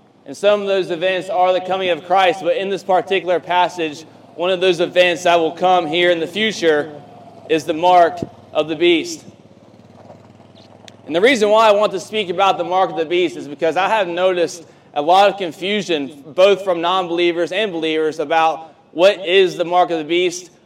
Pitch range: 160-190 Hz